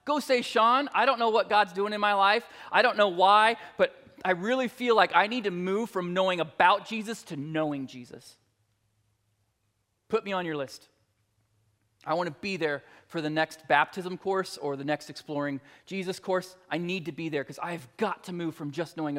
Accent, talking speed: American, 205 wpm